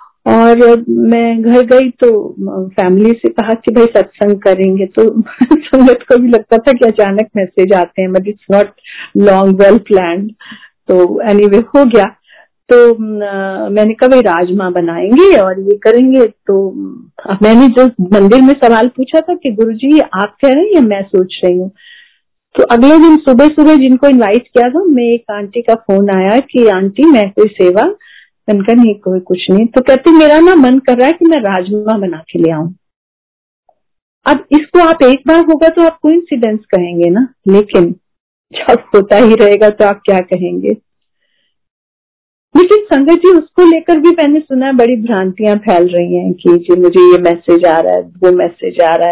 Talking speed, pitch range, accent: 180 wpm, 195-265 Hz, native